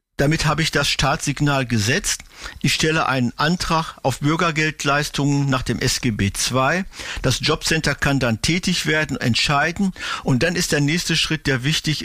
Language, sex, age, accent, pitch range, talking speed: German, male, 50-69, German, 125-150 Hz, 155 wpm